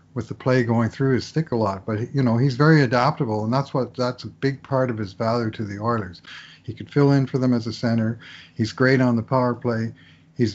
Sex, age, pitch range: male, 50-69, 110-130 Hz